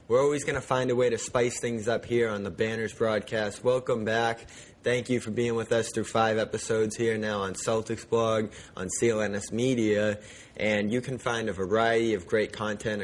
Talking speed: 205 wpm